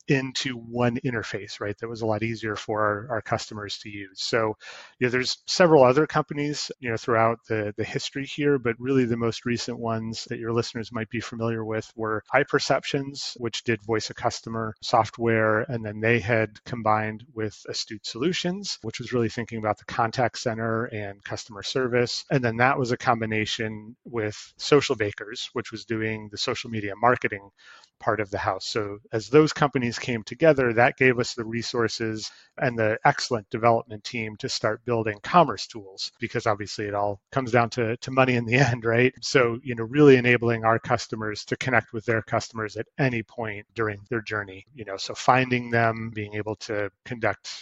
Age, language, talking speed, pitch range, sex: 30-49, English, 190 wpm, 110-125 Hz, male